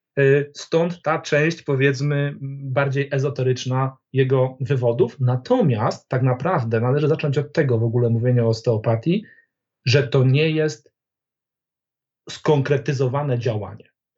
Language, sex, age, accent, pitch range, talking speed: Polish, male, 40-59, native, 125-155 Hz, 110 wpm